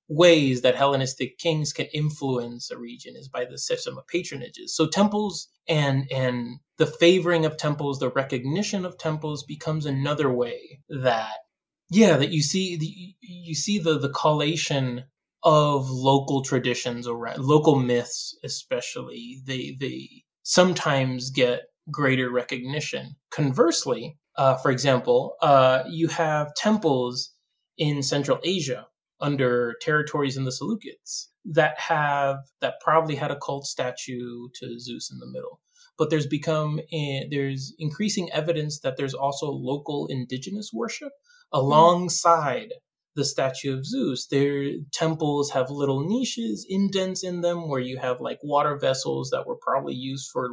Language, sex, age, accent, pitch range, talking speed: English, male, 20-39, American, 130-170 Hz, 140 wpm